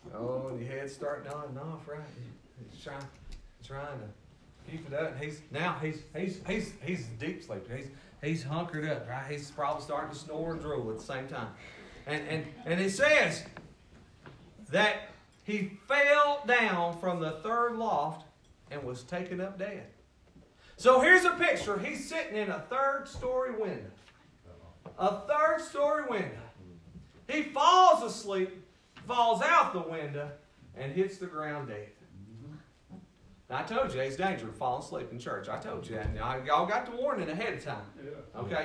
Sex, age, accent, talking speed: male, 40-59, American, 165 wpm